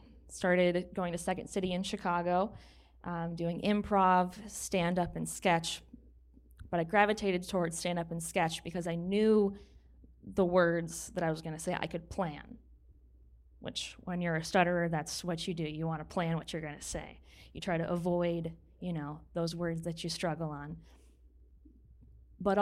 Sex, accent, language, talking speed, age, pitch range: female, American, English, 165 wpm, 20-39, 165-185 Hz